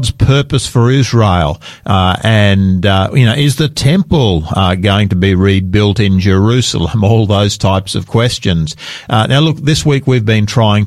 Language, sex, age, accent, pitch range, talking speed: English, male, 50-69, Australian, 95-125 Hz, 170 wpm